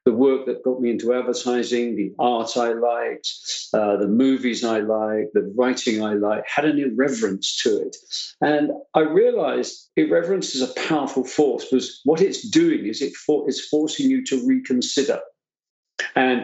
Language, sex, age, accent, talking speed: English, male, 50-69, British, 170 wpm